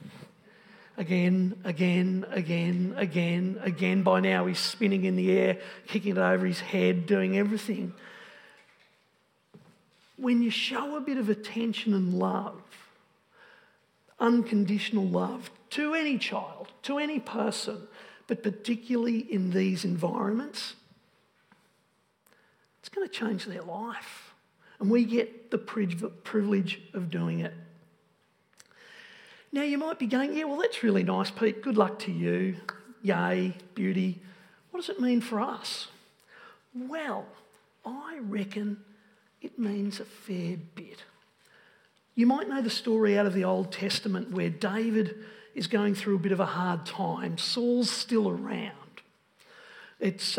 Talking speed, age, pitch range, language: 130 wpm, 50-69, 185-235 Hz, English